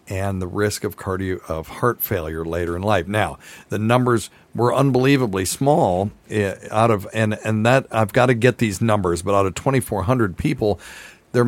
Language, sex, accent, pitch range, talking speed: English, male, American, 90-120 Hz, 195 wpm